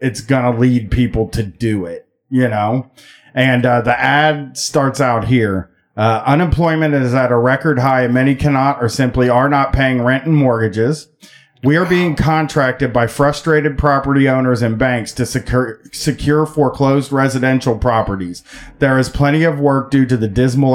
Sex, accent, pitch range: male, American, 120-145 Hz